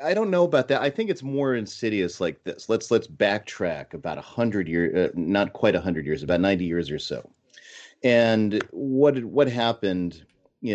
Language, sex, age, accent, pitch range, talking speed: English, male, 30-49, American, 85-115 Hz, 185 wpm